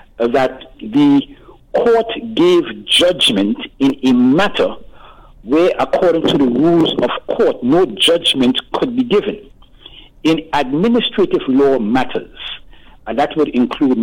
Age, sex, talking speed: 60-79, male, 120 wpm